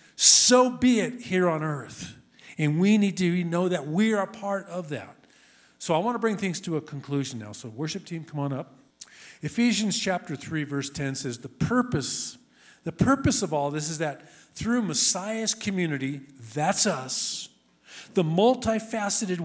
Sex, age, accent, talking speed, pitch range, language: male, 50-69, American, 175 wpm, 145-215 Hz, English